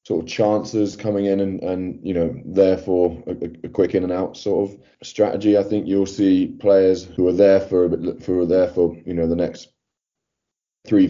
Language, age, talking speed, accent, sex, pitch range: English, 20-39, 210 wpm, British, male, 85-100 Hz